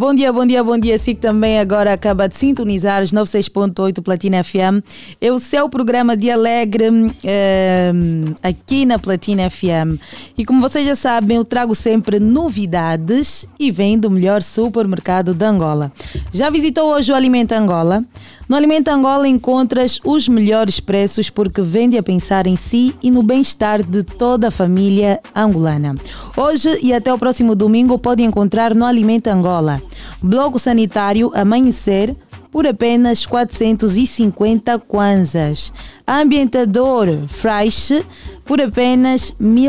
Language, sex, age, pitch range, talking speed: Portuguese, female, 20-39, 195-250 Hz, 140 wpm